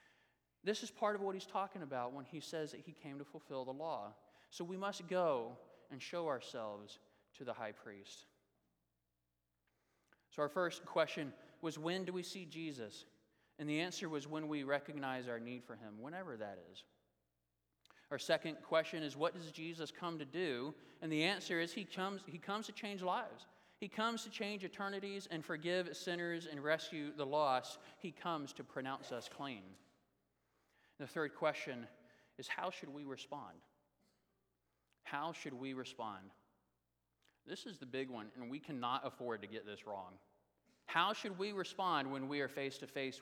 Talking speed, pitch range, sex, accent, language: 175 wpm, 120-170 Hz, male, American, English